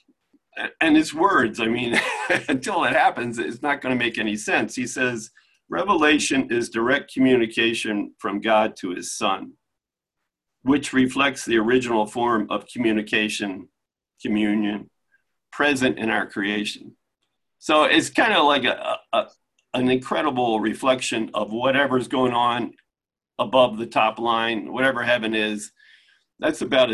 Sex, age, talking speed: male, 50-69, 135 wpm